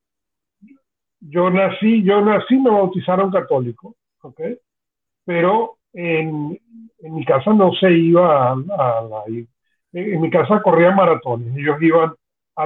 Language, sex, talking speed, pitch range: Spanish, male, 135 wpm, 160-200 Hz